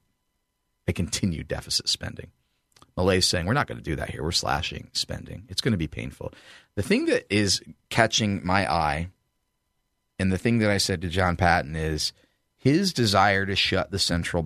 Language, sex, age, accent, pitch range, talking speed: English, male, 40-59, American, 80-100 Hz, 185 wpm